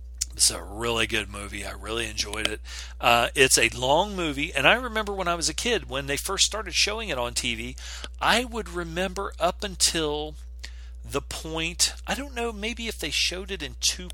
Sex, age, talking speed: male, 40-59, 200 wpm